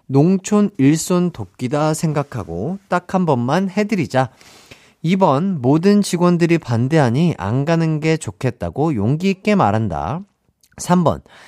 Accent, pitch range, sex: native, 110-170 Hz, male